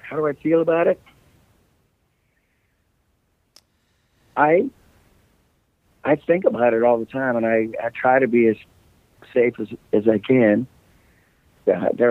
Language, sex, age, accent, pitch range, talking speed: English, male, 60-79, American, 115-140 Hz, 135 wpm